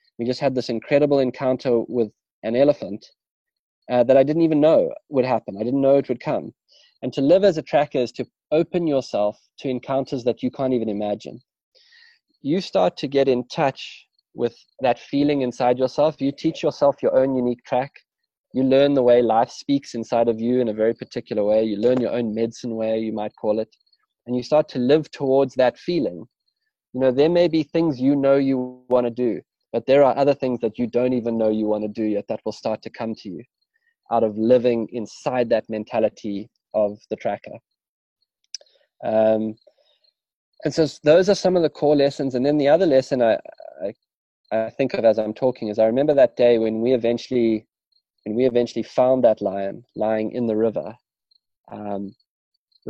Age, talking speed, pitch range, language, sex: 20-39, 200 wpm, 115-140 Hz, English, male